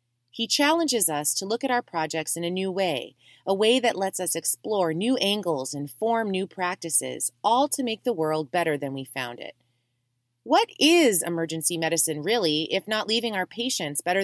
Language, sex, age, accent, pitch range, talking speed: English, female, 30-49, American, 150-230 Hz, 190 wpm